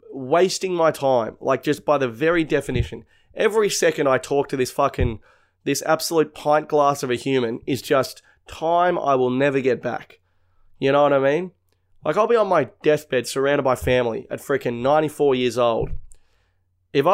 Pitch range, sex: 125-155 Hz, male